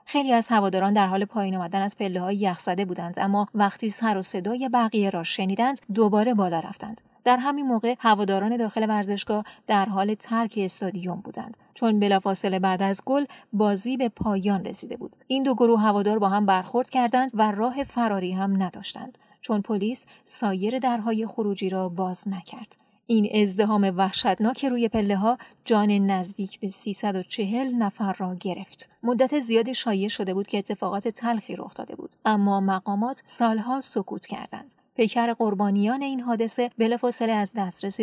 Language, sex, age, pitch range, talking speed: Persian, female, 30-49, 195-235 Hz, 160 wpm